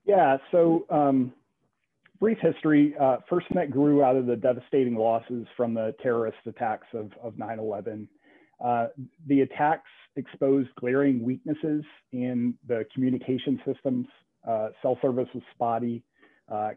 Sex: male